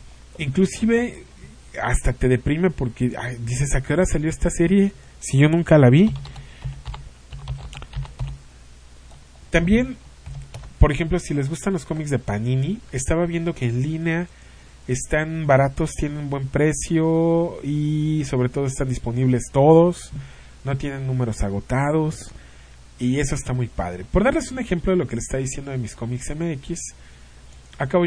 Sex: male